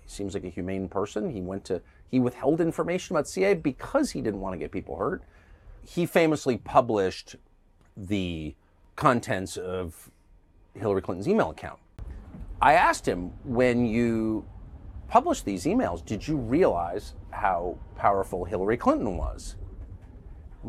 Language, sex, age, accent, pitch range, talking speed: English, male, 40-59, American, 90-120 Hz, 140 wpm